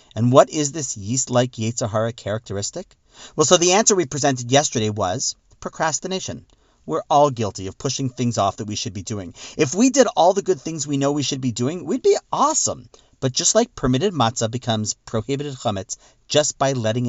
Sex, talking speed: male, 195 wpm